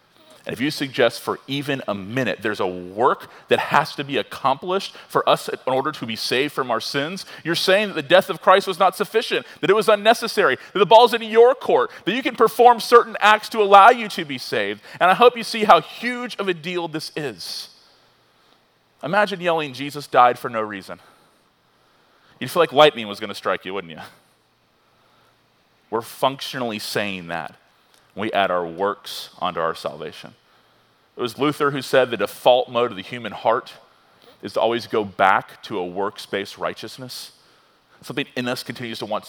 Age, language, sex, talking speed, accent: 30-49, English, male, 190 wpm, American